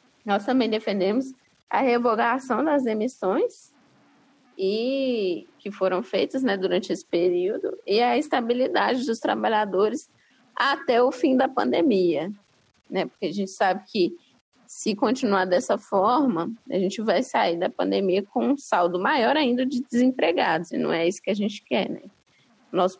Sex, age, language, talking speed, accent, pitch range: female, 20-39, Portuguese, 150 wpm, Brazilian, 180-255 Hz